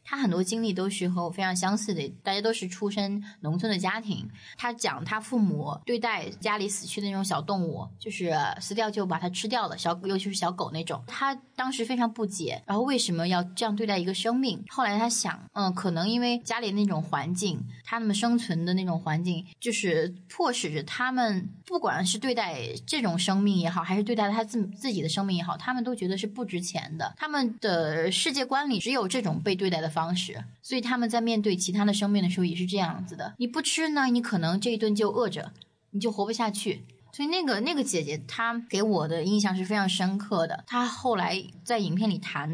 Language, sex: Chinese, female